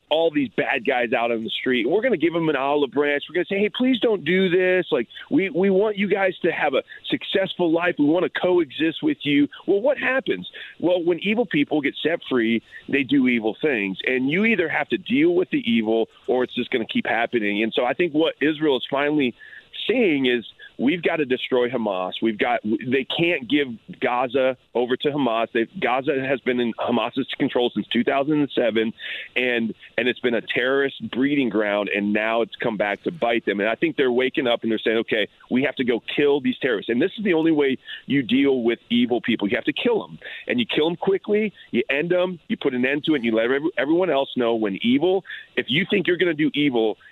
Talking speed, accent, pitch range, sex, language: 240 wpm, American, 120-190 Hz, male, English